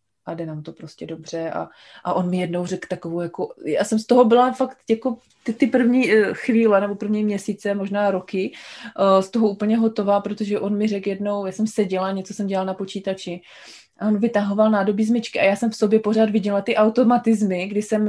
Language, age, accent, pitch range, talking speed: Czech, 20-39, native, 190-220 Hz, 210 wpm